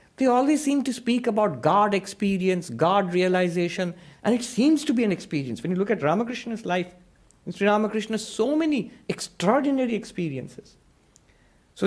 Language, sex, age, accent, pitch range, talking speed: English, male, 60-79, Indian, 140-215 Hz, 150 wpm